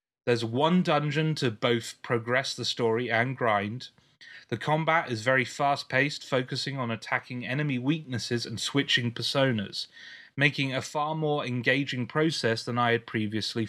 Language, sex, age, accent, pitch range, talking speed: English, male, 30-49, British, 115-140 Hz, 145 wpm